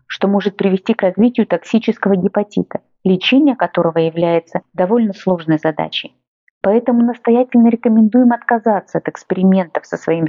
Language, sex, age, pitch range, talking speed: Russian, female, 30-49, 180-235 Hz, 120 wpm